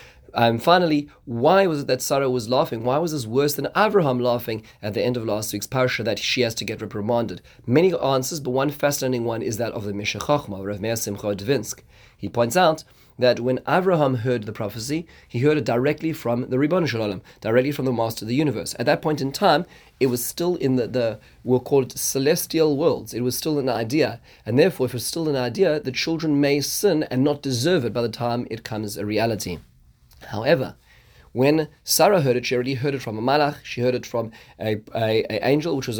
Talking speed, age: 220 wpm, 30-49